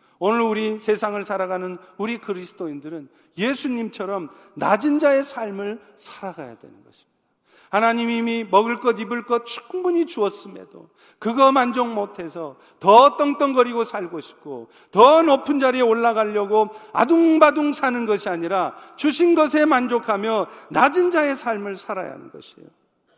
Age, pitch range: 40-59, 205-270 Hz